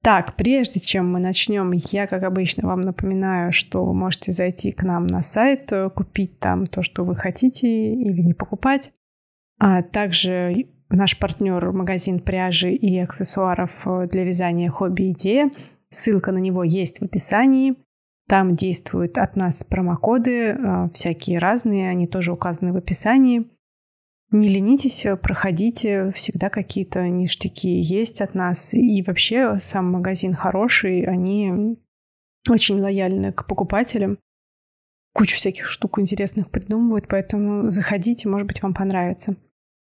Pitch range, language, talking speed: 180-210 Hz, Russian, 130 wpm